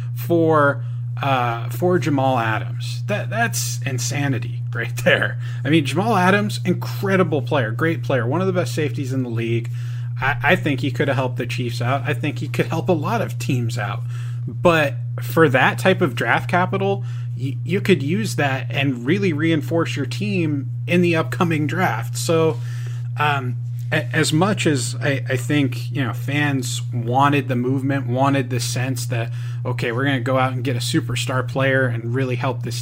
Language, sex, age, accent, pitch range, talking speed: English, male, 30-49, American, 120-140 Hz, 185 wpm